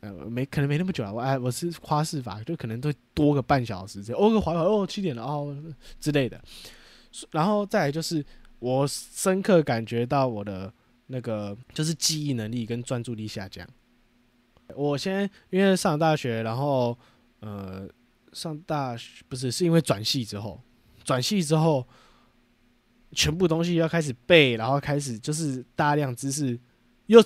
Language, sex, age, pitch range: Chinese, male, 20-39, 115-150 Hz